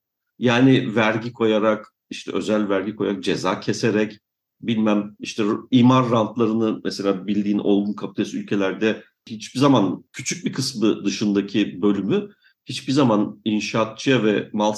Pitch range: 105-155 Hz